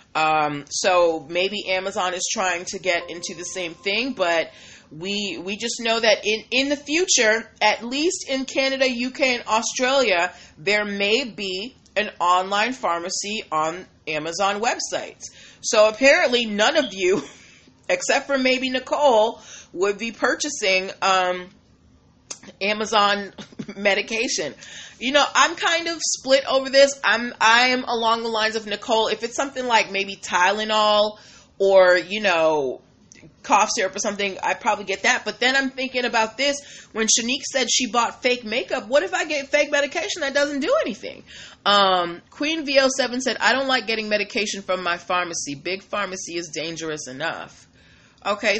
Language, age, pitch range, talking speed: English, 30-49, 185-260 Hz, 155 wpm